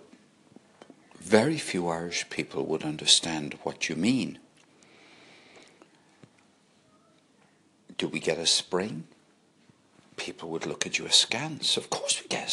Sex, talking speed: male, 115 wpm